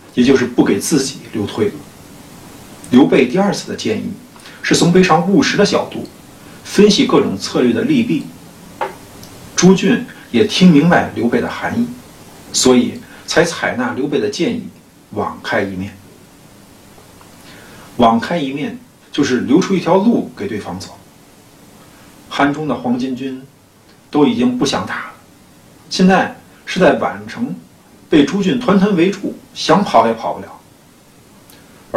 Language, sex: Chinese, male